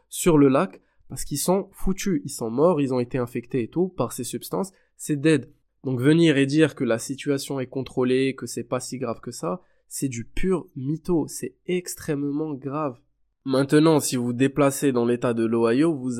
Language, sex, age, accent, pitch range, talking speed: French, male, 20-39, French, 125-150 Hz, 200 wpm